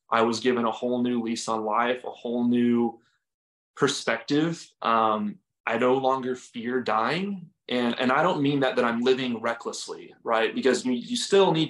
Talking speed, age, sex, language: 180 wpm, 20-39, male, English